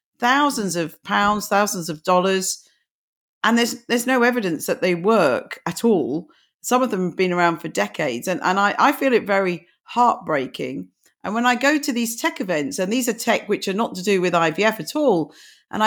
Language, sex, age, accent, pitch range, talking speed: English, female, 40-59, British, 195-260 Hz, 205 wpm